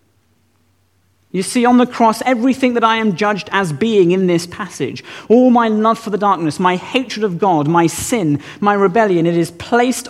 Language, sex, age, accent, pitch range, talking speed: English, male, 40-59, British, 140-225 Hz, 190 wpm